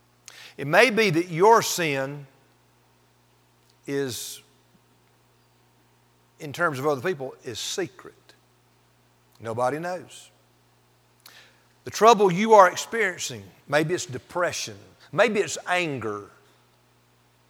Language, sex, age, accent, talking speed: English, male, 50-69, American, 95 wpm